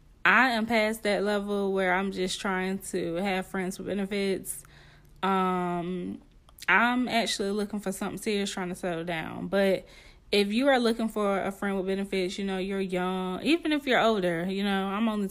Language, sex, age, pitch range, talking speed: English, female, 20-39, 185-215 Hz, 185 wpm